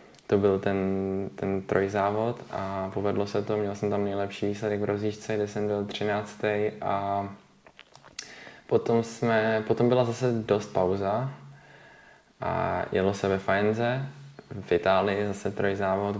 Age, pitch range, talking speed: 20-39, 95-110 Hz, 130 wpm